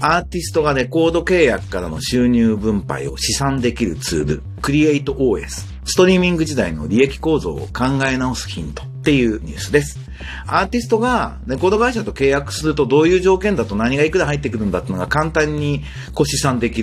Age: 40-59